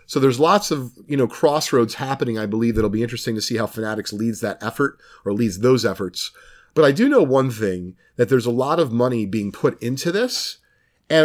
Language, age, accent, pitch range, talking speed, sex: English, 30-49, American, 115-140 Hz, 220 wpm, male